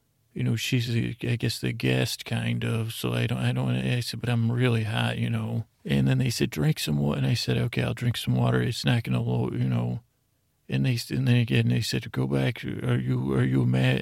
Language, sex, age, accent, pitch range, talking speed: English, male, 40-59, American, 105-125 Hz, 250 wpm